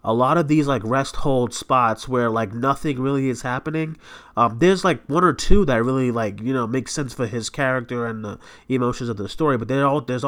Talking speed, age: 220 wpm, 30-49